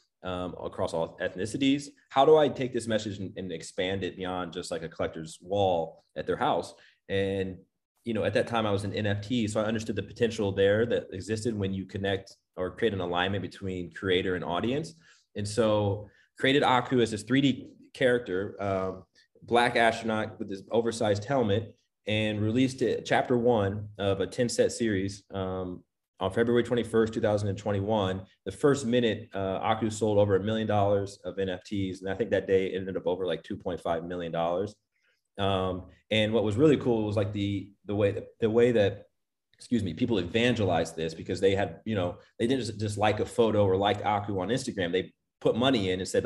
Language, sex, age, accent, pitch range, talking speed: English, male, 20-39, American, 95-115 Hz, 200 wpm